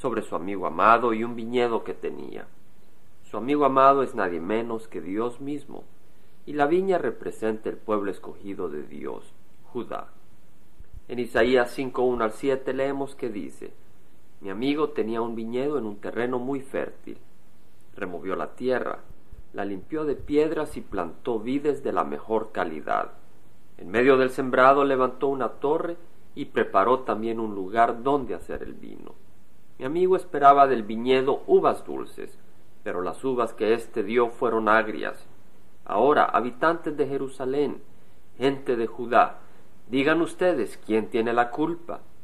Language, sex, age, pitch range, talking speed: Spanish, male, 40-59, 115-155 Hz, 150 wpm